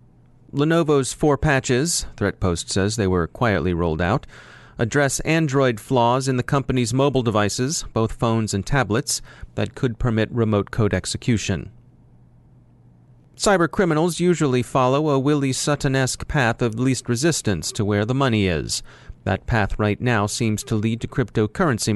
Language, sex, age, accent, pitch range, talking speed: English, male, 40-59, American, 105-135 Hz, 140 wpm